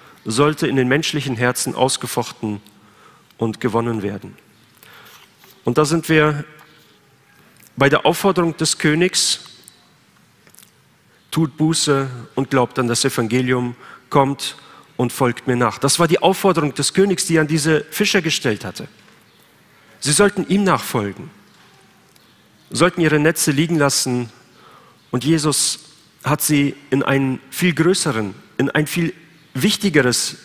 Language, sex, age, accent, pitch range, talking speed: German, male, 40-59, German, 125-160 Hz, 125 wpm